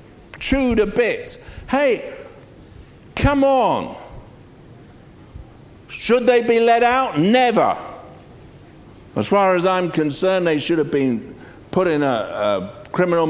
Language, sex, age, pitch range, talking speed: English, male, 60-79, 130-195 Hz, 115 wpm